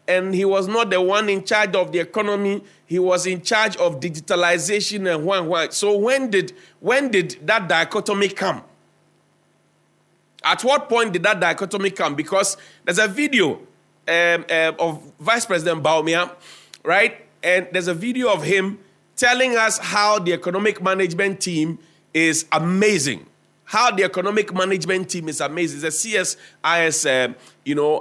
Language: English